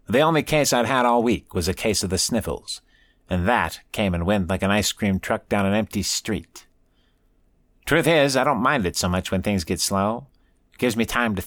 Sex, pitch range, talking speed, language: male, 85-105 Hz, 225 wpm, English